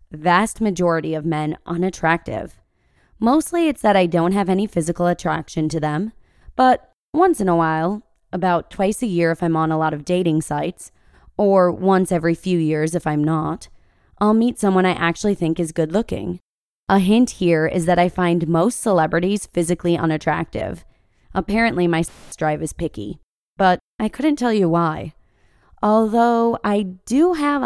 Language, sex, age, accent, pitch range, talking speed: English, female, 20-39, American, 165-200 Hz, 165 wpm